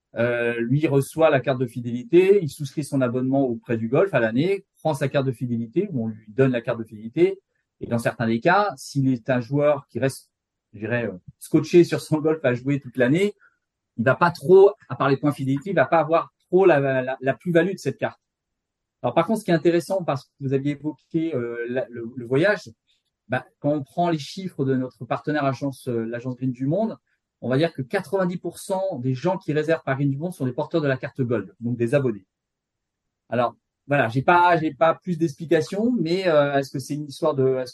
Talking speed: 225 wpm